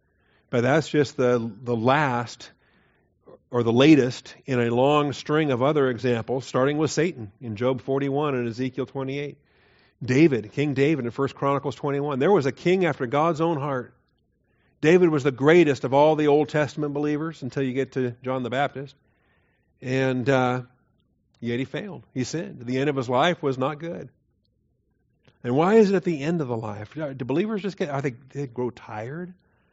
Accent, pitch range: American, 125-155 Hz